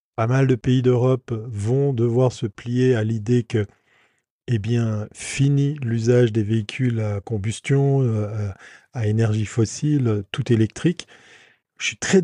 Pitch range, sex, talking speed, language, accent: 110-135 Hz, male, 140 wpm, French, French